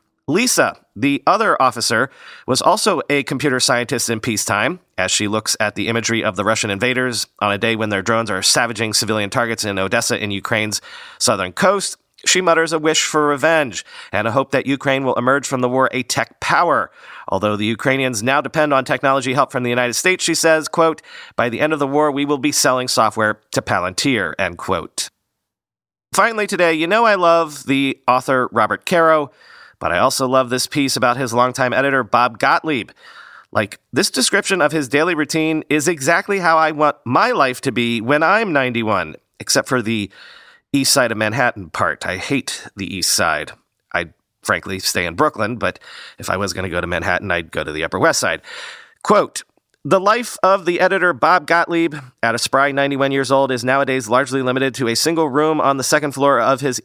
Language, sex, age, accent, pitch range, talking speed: English, male, 40-59, American, 115-155 Hz, 200 wpm